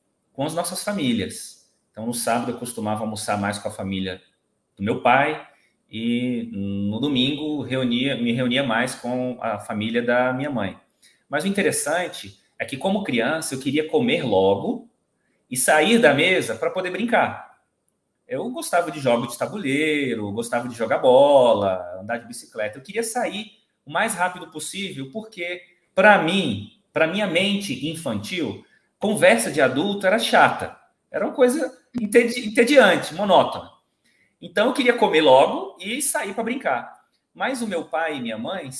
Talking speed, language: 160 wpm, Portuguese